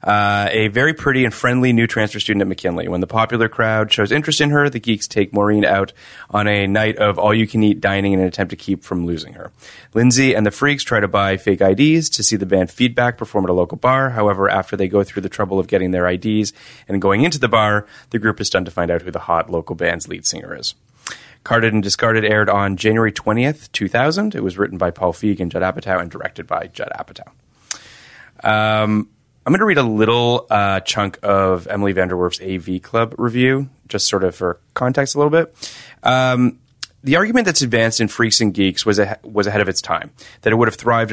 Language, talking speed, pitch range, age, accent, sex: English, 225 wpm, 95-120 Hz, 30-49, American, male